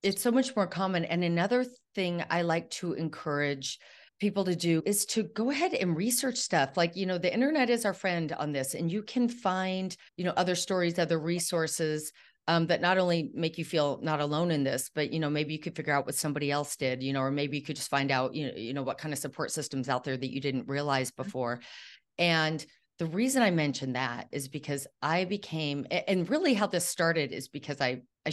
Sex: female